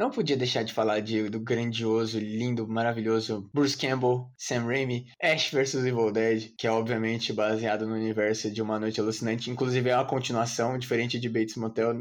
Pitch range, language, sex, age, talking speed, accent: 115-150 Hz, Portuguese, male, 20-39, 180 wpm, Brazilian